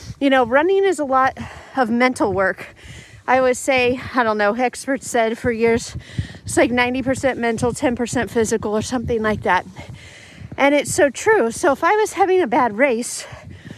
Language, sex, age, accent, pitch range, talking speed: English, female, 40-59, American, 240-325 Hz, 180 wpm